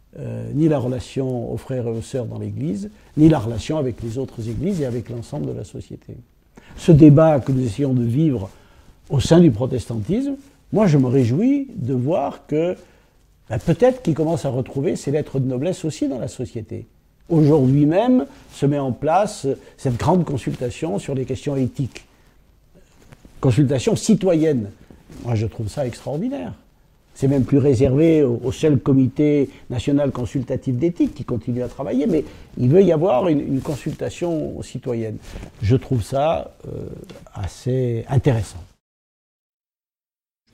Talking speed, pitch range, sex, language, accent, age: 155 wpm, 125-160 Hz, male, French, French, 60-79